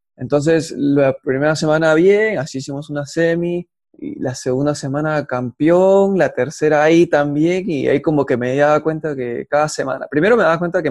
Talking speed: 180 wpm